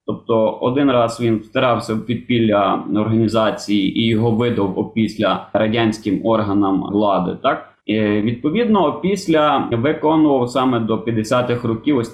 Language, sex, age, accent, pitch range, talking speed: Ukrainian, male, 20-39, native, 110-145 Hz, 125 wpm